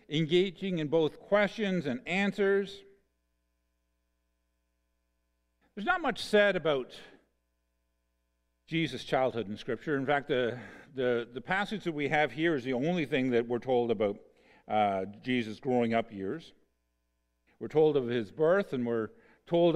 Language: English